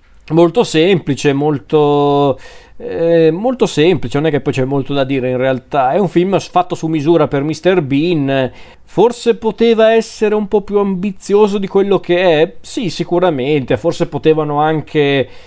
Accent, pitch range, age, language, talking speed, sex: native, 135-170 Hz, 40-59, Italian, 160 wpm, male